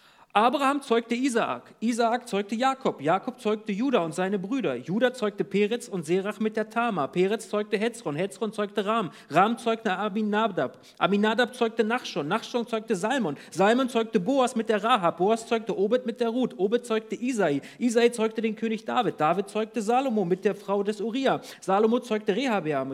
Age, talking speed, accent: 40-59, 175 wpm, German